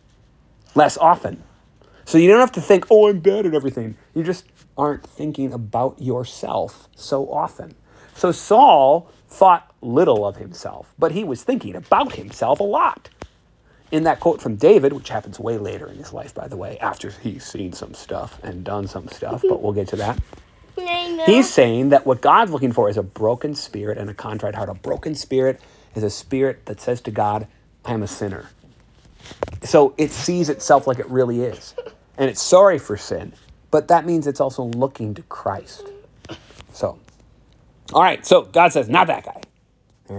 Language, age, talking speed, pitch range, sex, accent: English, 40-59, 185 wpm, 110-155 Hz, male, American